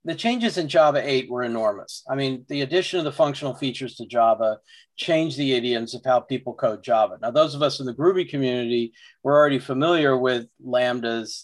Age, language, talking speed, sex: 40-59, English, 200 wpm, male